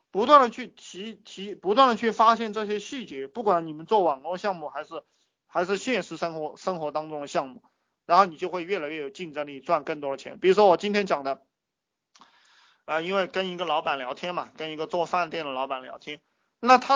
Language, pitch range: Chinese, 155-205 Hz